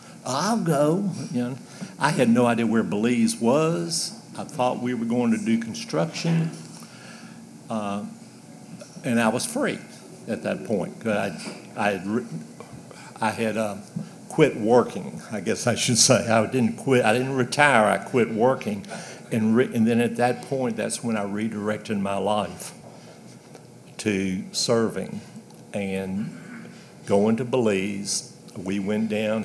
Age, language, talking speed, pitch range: 60-79, English, 145 wpm, 105-125 Hz